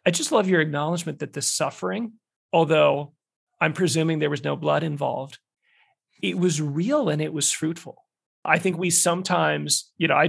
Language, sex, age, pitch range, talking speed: English, male, 40-59, 140-175 Hz, 175 wpm